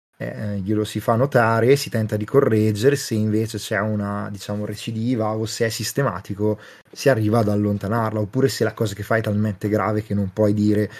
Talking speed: 200 wpm